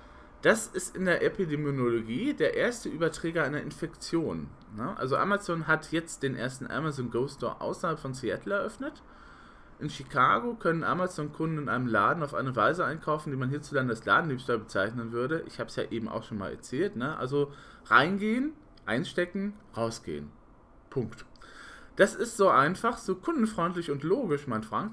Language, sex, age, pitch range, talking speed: German, male, 20-39, 120-165 Hz, 155 wpm